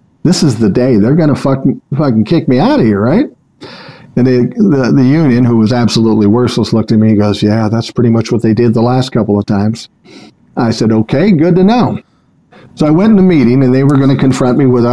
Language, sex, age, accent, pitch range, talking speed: English, male, 50-69, American, 115-150 Hz, 240 wpm